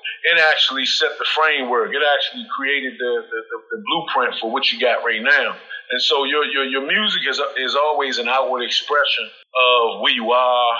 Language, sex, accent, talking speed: English, male, American, 195 wpm